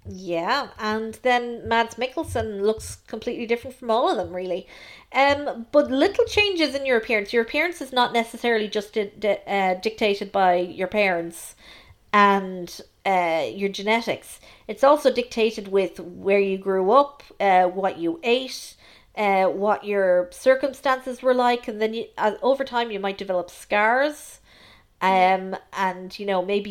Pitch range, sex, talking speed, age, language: 195-260 Hz, female, 150 wpm, 40-59, English